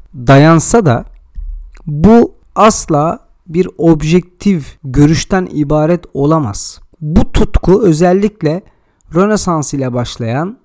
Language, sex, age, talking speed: Turkish, male, 40-59, 85 wpm